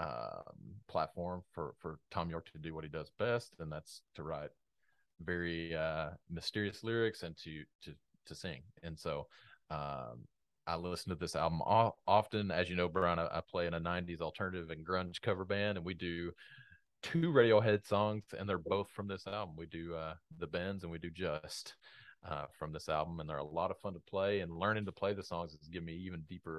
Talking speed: 210 wpm